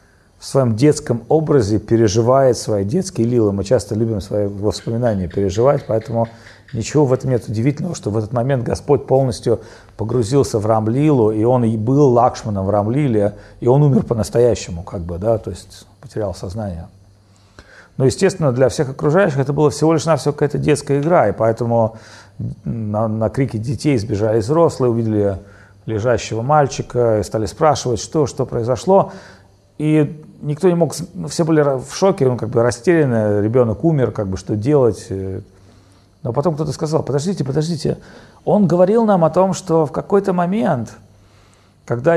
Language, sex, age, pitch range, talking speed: Russian, male, 40-59, 105-145 Hz, 160 wpm